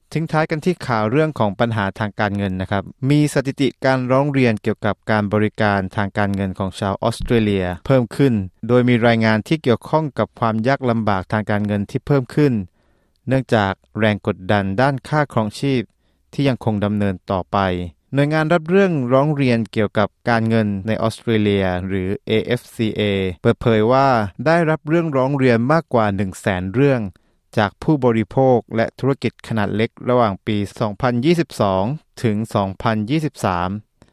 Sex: male